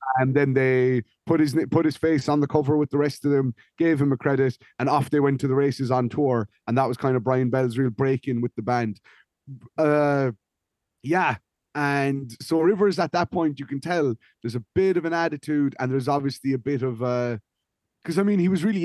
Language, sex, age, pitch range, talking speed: English, male, 30-49, 125-150 Hz, 225 wpm